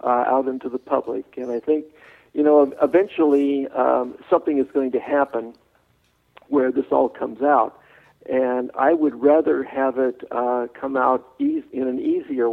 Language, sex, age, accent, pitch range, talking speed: English, male, 60-79, American, 125-150 Hz, 165 wpm